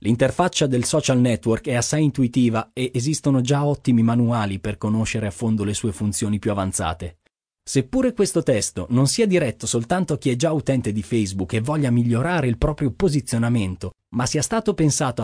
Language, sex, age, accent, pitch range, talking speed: Italian, male, 30-49, native, 110-165 Hz, 175 wpm